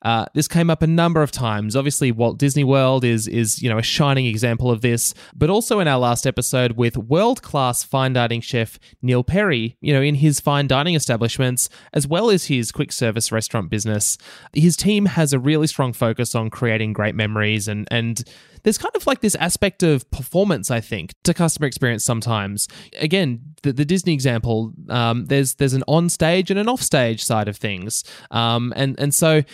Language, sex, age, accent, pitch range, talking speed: English, male, 20-39, Australian, 115-170 Hz, 200 wpm